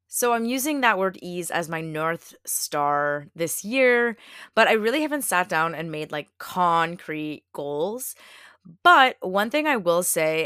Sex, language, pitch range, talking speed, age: female, English, 155-205 Hz, 165 wpm, 20-39